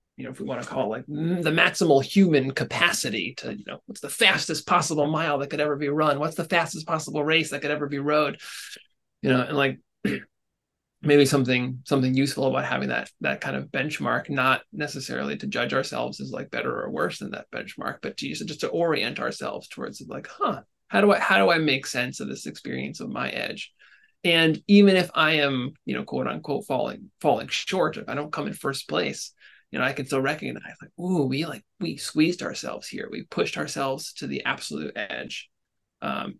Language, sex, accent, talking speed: English, male, American, 215 wpm